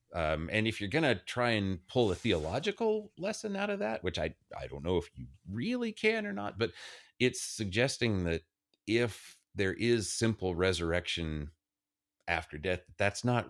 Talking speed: 175 wpm